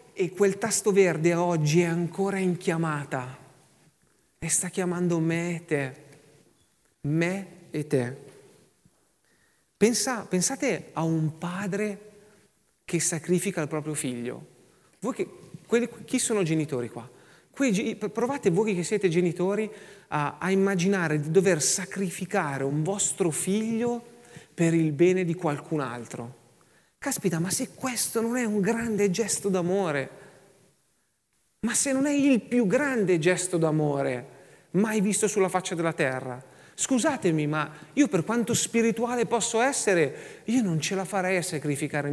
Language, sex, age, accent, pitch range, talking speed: Italian, male, 40-59, native, 155-205 Hz, 130 wpm